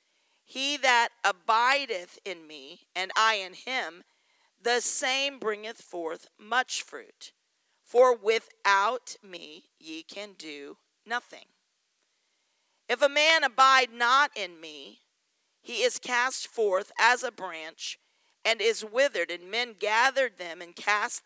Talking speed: 125 wpm